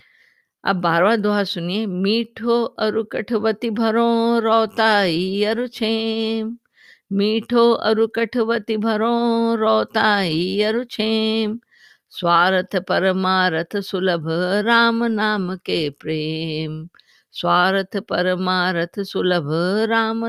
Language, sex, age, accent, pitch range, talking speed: Hindi, female, 50-69, native, 170-220 Hz, 80 wpm